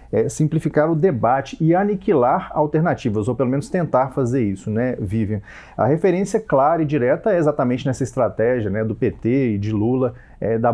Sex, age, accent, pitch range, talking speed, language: male, 30-49, Brazilian, 115-155 Hz, 170 wpm, Portuguese